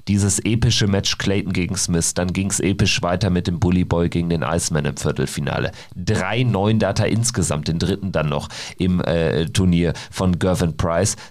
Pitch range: 85-100 Hz